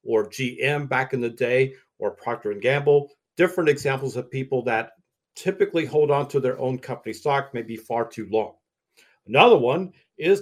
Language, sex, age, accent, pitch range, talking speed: English, male, 50-69, American, 125-170 Hz, 180 wpm